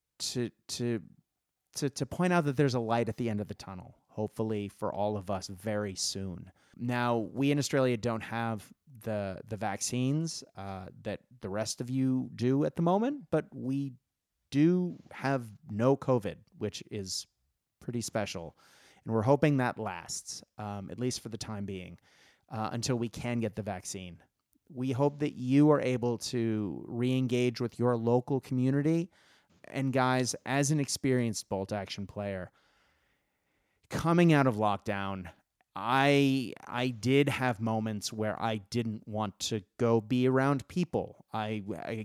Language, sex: English, male